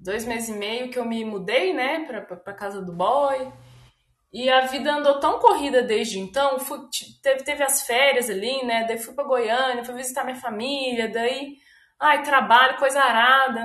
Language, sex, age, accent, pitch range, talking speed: Portuguese, female, 20-39, Brazilian, 205-275 Hz, 180 wpm